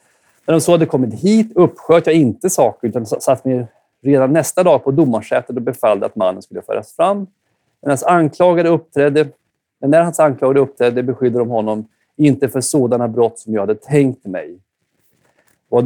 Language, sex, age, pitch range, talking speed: Swedish, male, 30-49, 115-165 Hz, 175 wpm